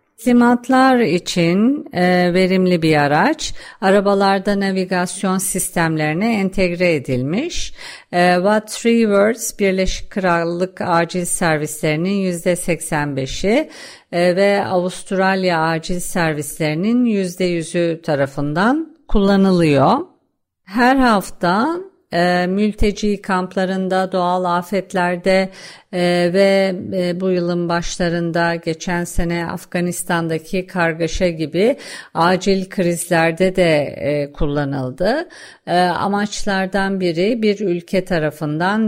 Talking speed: 75 wpm